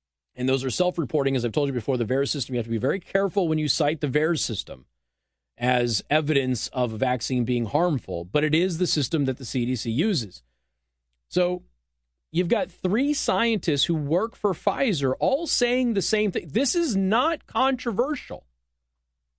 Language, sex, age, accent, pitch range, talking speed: English, male, 40-59, American, 120-200 Hz, 185 wpm